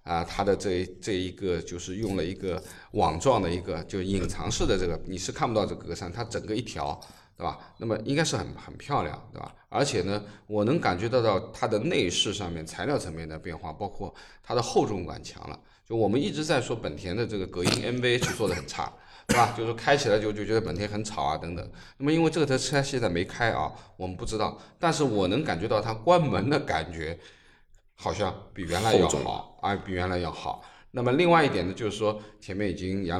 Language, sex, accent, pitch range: Chinese, male, native, 90-115 Hz